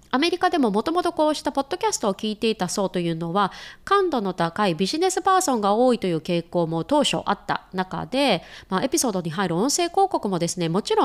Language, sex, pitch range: Japanese, female, 175-285 Hz